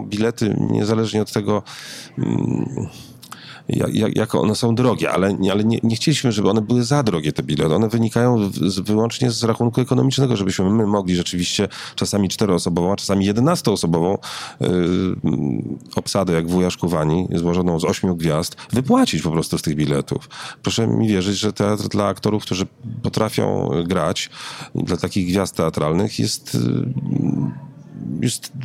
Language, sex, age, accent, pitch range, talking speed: Polish, male, 40-59, native, 85-110 Hz, 140 wpm